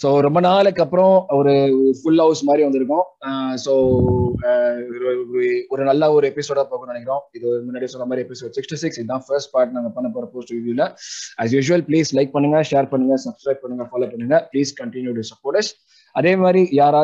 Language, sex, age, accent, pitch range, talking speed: Tamil, male, 20-39, native, 130-175 Hz, 160 wpm